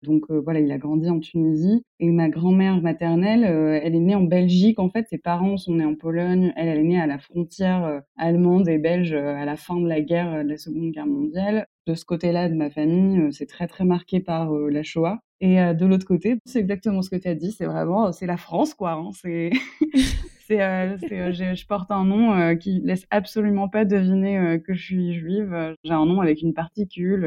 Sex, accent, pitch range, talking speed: female, French, 165-195 Hz, 240 wpm